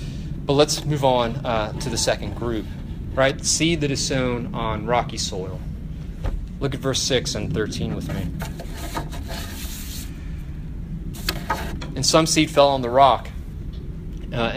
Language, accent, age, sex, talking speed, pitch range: English, American, 30-49, male, 135 wpm, 85-135 Hz